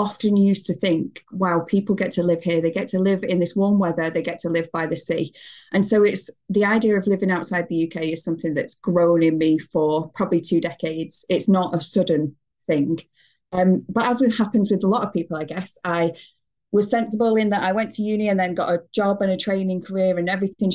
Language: English